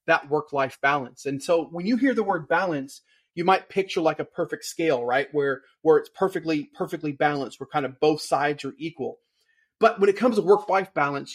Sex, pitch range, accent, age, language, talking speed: male, 145-190 Hz, American, 30-49, English, 215 wpm